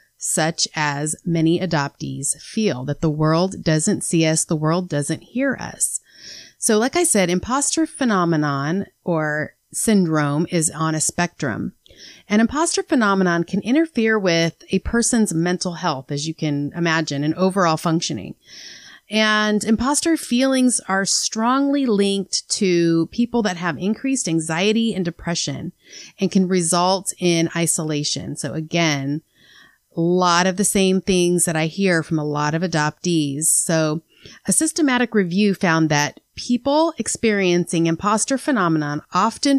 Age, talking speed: 30-49, 140 wpm